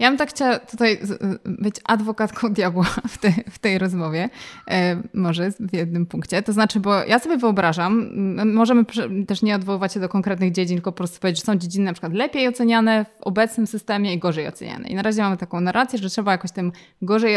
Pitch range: 190-225 Hz